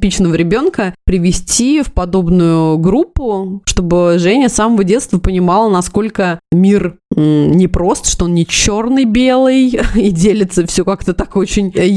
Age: 20-39